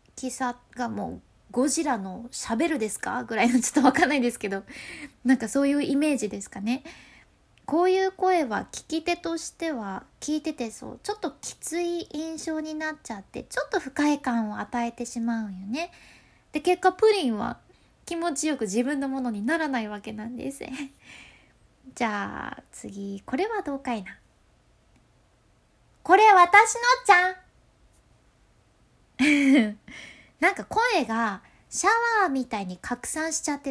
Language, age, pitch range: Japanese, 20-39, 225-345 Hz